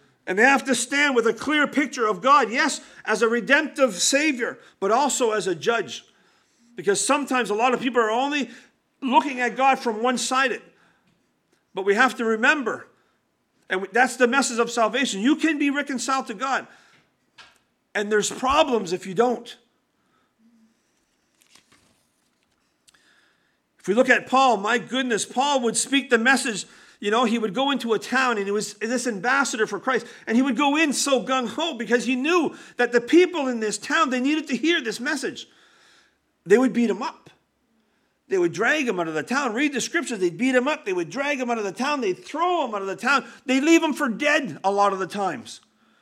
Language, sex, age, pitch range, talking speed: English, male, 50-69, 230-285 Hz, 195 wpm